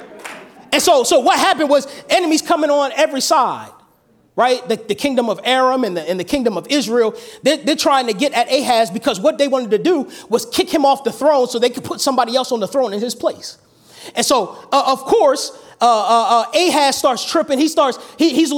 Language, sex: English, male